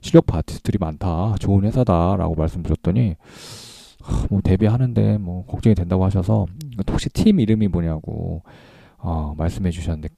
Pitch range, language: 85-115 Hz, Korean